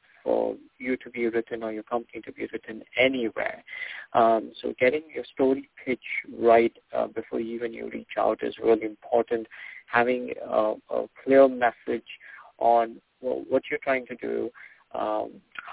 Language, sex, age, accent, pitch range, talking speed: English, male, 50-69, Indian, 115-135 Hz, 160 wpm